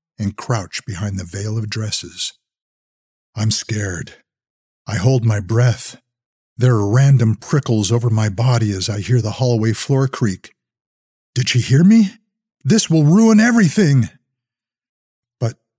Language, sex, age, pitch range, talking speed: English, male, 50-69, 105-145 Hz, 135 wpm